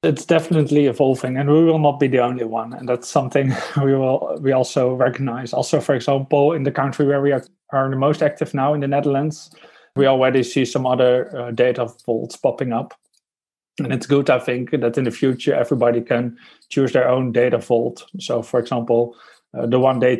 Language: English